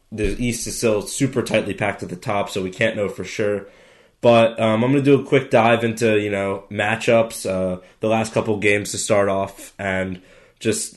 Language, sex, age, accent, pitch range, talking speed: English, male, 20-39, American, 100-115 Hz, 210 wpm